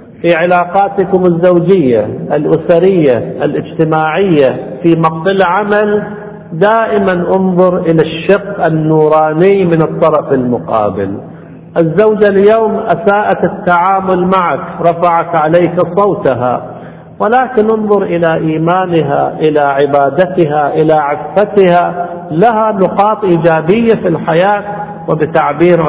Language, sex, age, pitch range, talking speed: Arabic, male, 50-69, 155-195 Hz, 90 wpm